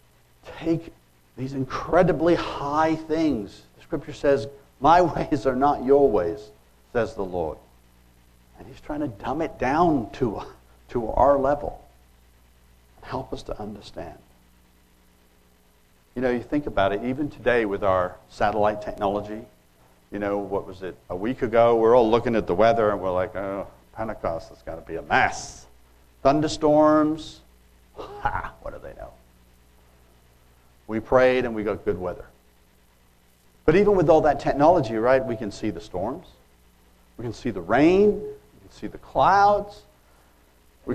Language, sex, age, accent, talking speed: English, male, 60-79, American, 155 wpm